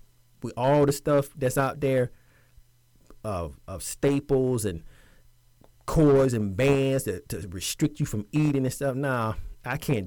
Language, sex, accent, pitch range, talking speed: English, male, American, 115-145 Hz, 150 wpm